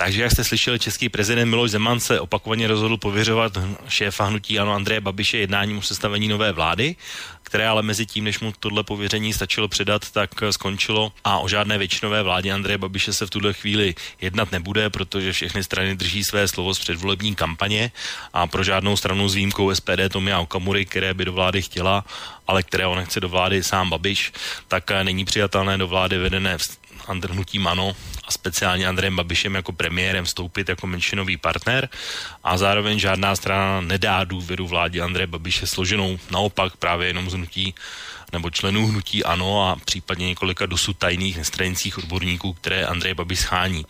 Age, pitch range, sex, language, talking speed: 30-49, 90-105 Hz, male, Slovak, 175 wpm